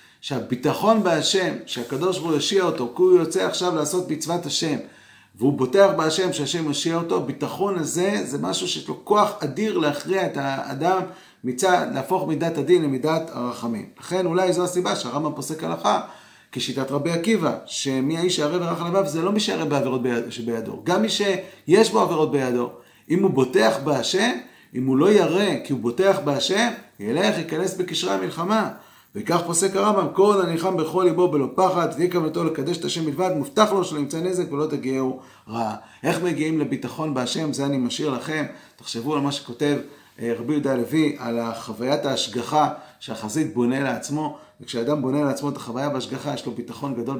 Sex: male